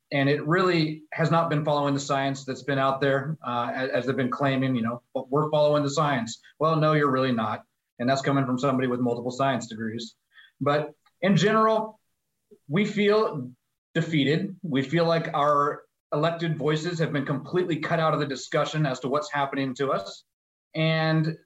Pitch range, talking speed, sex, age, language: 140-180 Hz, 180 wpm, male, 30-49, English